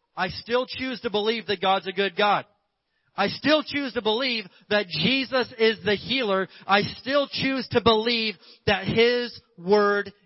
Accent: American